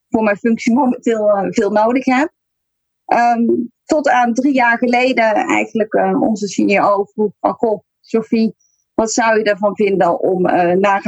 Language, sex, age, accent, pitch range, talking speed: Dutch, female, 30-49, Dutch, 195-255 Hz, 155 wpm